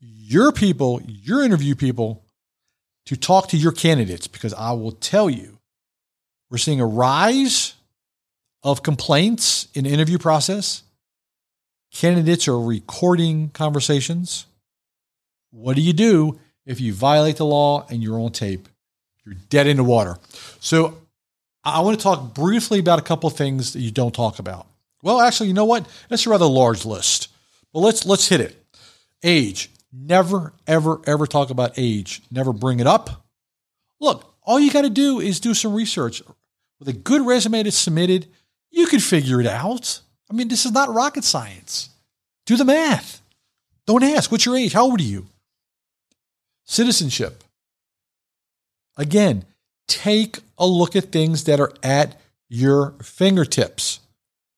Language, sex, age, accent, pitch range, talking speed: English, male, 50-69, American, 120-190 Hz, 155 wpm